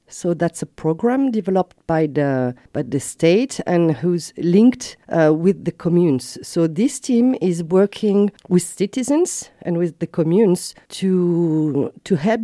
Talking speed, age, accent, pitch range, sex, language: 150 wpm, 40-59, French, 155-205 Hz, female, English